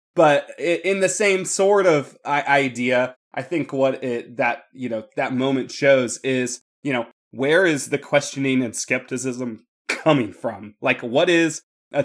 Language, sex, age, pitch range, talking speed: English, male, 20-39, 130-175 Hz, 160 wpm